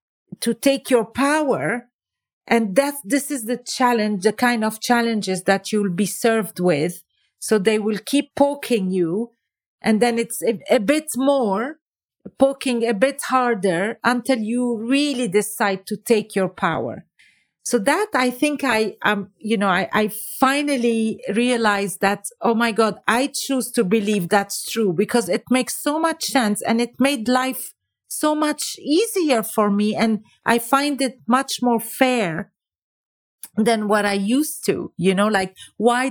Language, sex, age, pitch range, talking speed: English, female, 40-59, 205-255 Hz, 160 wpm